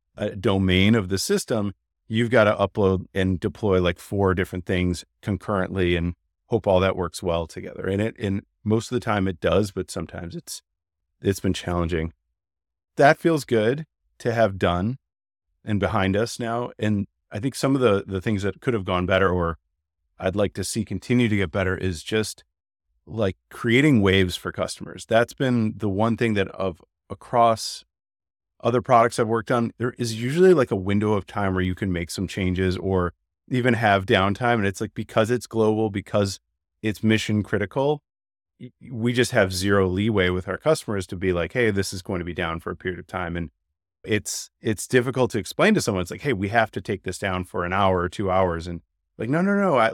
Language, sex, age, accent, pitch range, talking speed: English, male, 30-49, American, 90-115 Hz, 205 wpm